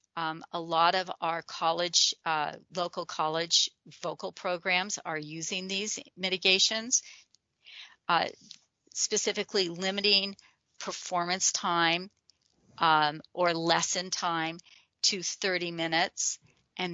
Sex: female